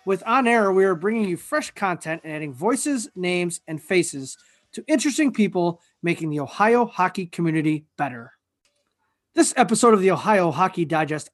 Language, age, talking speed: English, 30-49, 165 wpm